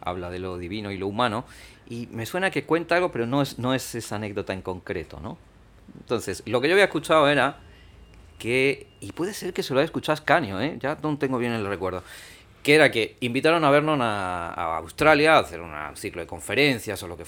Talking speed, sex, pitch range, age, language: 225 wpm, male, 100-145 Hz, 40-59, Spanish